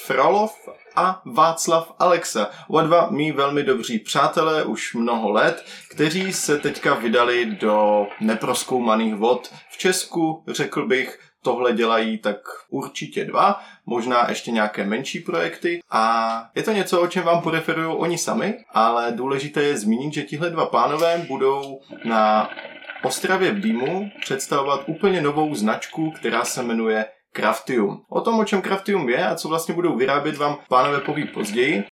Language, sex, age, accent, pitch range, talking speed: Czech, male, 20-39, native, 120-165 Hz, 150 wpm